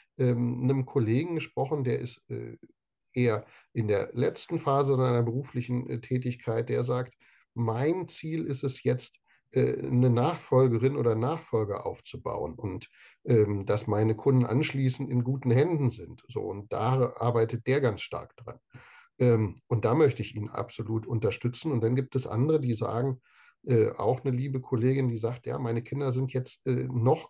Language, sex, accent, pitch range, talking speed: German, male, German, 115-135 Hz, 145 wpm